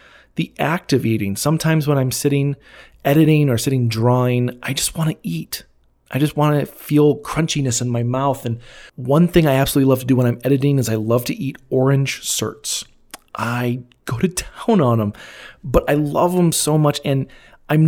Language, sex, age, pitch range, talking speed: English, male, 30-49, 115-150 Hz, 195 wpm